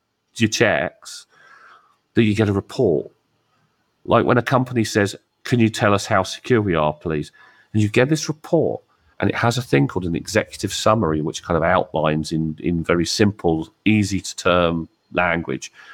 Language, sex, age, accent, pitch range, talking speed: English, male, 40-59, British, 80-105 Hz, 175 wpm